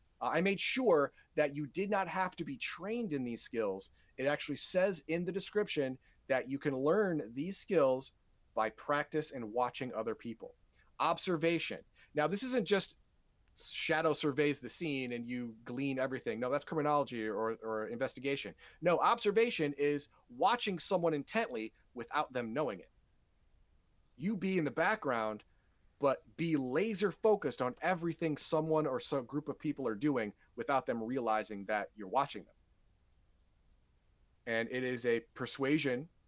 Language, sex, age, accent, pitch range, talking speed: English, male, 30-49, American, 120-165 Hz, 155 wpm